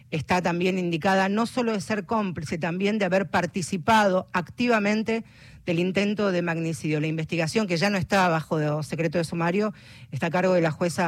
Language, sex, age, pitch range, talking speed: Spanish, female, 40-59, 160-200 Hz, 180 wpm